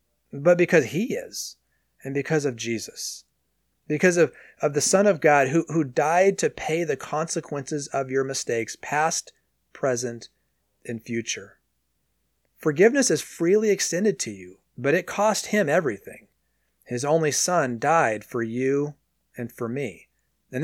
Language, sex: English, male